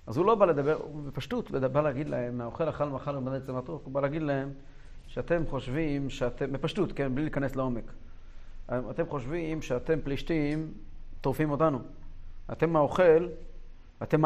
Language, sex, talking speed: Hebrew, male, 165 wpm